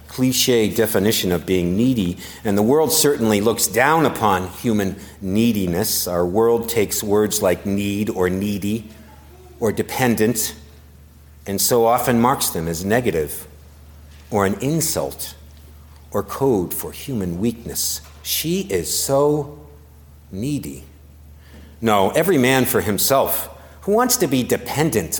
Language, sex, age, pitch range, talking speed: English, male, 50-69, 75-110 Hz, 125 wpm